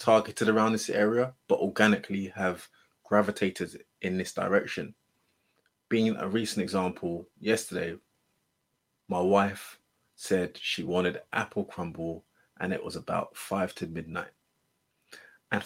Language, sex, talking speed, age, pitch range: English, male, 120 wpm, 20-39, 90-110 Hz